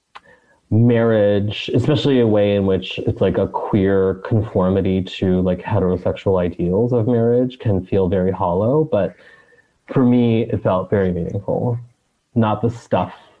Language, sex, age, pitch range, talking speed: English, male, 30-49, 95-120 Hz, 140 wpm